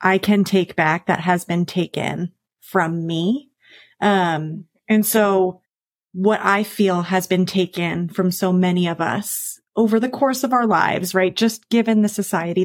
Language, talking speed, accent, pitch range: English, 165 wpm, American, 175-220 Hz